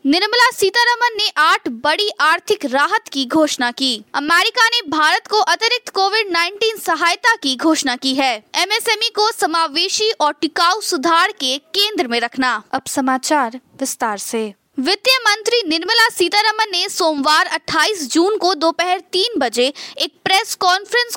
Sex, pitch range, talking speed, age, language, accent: female, 280-390 Hz, 145 wpm, 20-39, Hindi, native